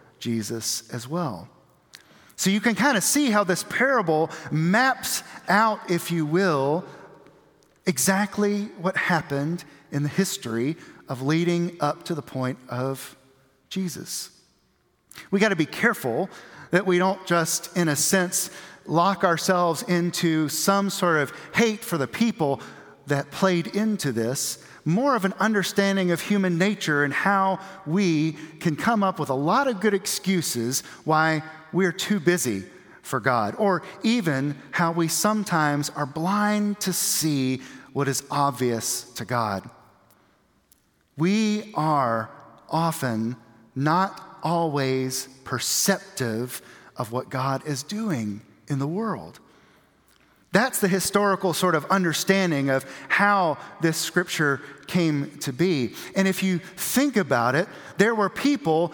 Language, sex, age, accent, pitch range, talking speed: English, male, 40-59, American, 140-195 Hz, 135 wpm